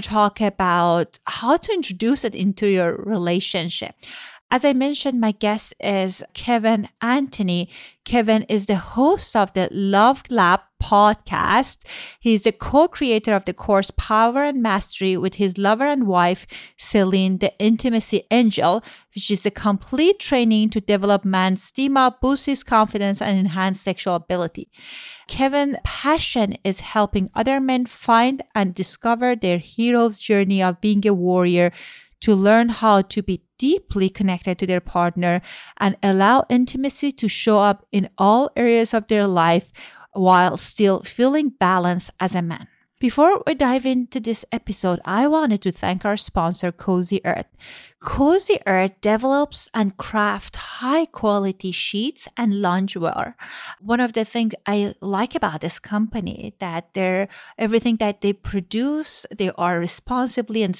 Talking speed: 145 wpm